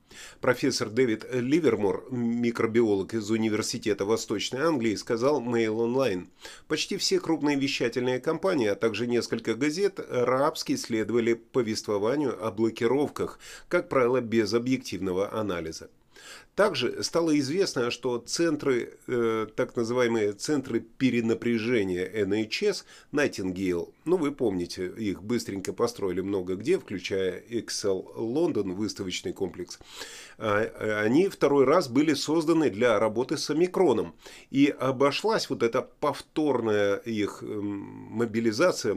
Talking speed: 115 wpm